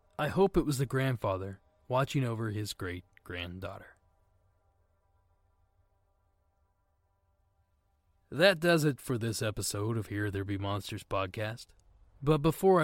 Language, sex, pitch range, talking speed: English, male, 95-135 Hz, 110 wpm